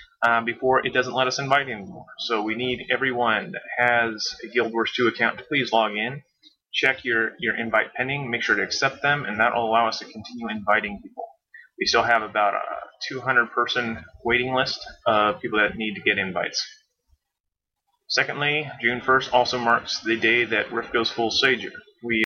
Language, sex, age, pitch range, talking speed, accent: English, male, 30-49, 105-125 Hz, 190 wpm, American